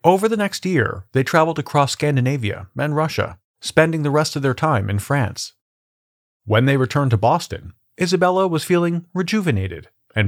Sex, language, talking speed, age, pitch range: male, English, 165 wpm, 40-59, 110-160 Hz